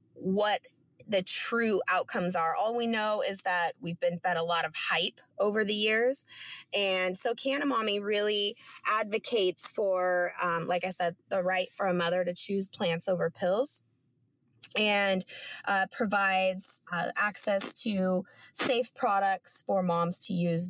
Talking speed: 150 wpm